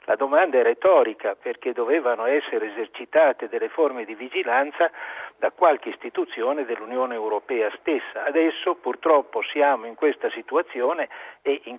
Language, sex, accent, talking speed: Italian, male, native, 130 wpm